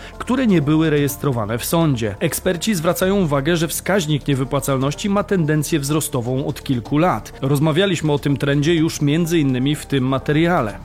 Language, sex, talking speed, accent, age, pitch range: Polish, male, 150 wpm, native, 30-49, 135-185 Hz